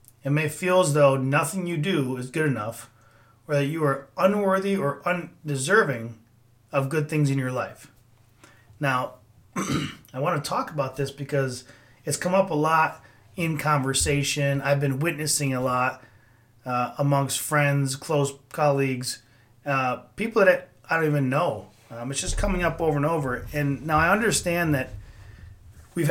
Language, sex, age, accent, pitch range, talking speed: English, male, 30-49, American, 120-155 Hz, 160 wpm